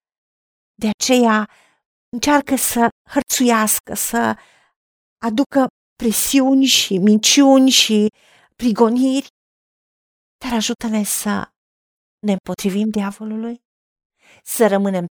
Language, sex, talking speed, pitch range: Romanian, female, 80 wpm, 205-260 Hz